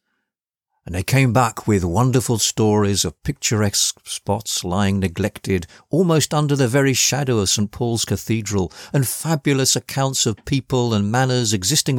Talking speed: 145 wpm